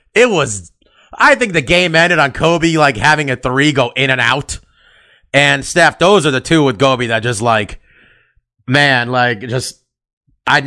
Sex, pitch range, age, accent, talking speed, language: male, 115-145 Hz, 30-49, American, 180 wpm, English